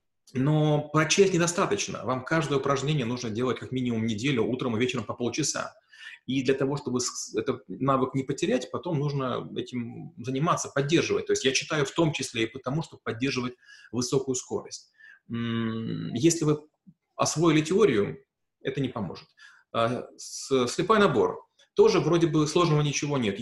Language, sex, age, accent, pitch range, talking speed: Russian, male, 30-49, native, 125-150 Hz, 145 wpm